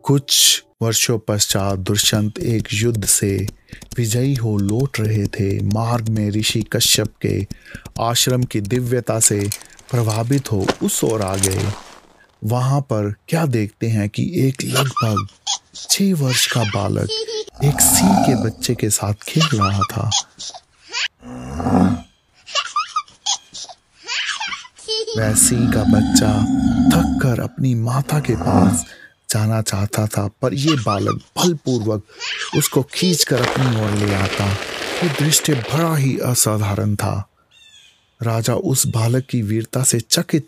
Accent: native